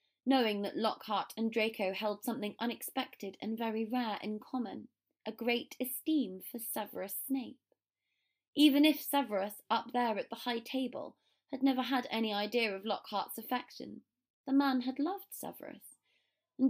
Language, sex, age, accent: English, female, 20-39, British